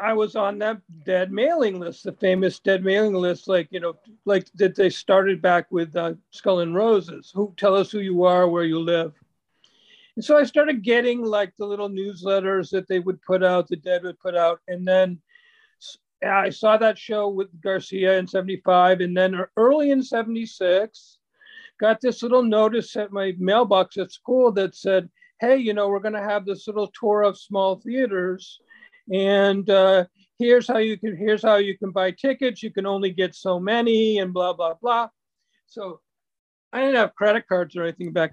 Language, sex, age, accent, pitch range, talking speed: English, male, 50-69, American, 180-220 Hz, 190 wpm